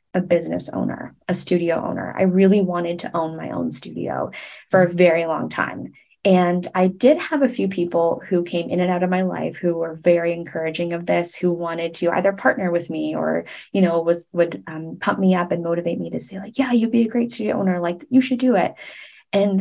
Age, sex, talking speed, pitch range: 20-39, female, 230 wpm, 170-195 Hz